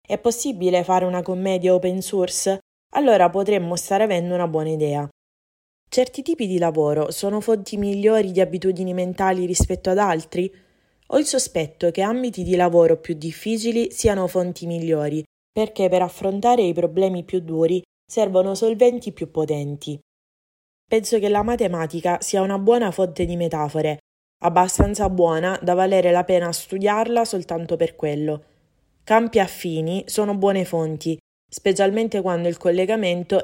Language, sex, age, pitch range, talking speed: Italian, female, 20-39, 165-200 Hz, 140 wpm